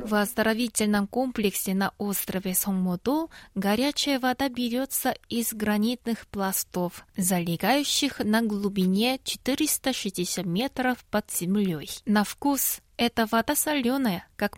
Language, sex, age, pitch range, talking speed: Russian, female, 20-39, 195-260 Hz, 105 wpm